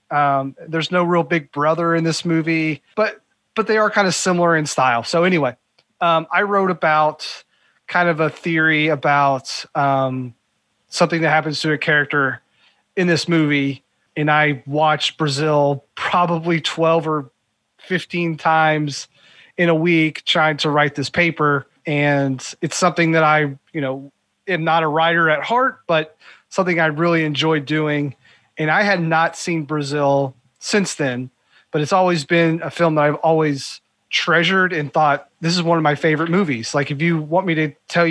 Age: 30-49